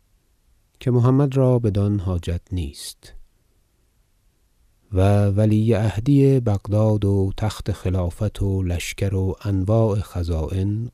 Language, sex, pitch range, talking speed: Persian, male, 85-110 Hz, 100 wpm